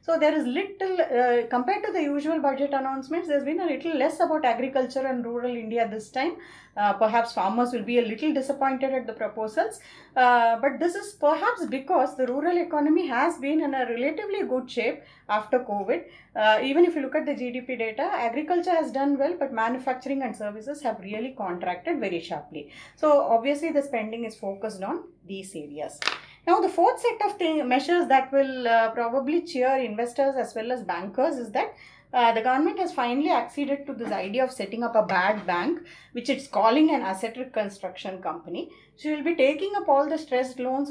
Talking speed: 195 wpm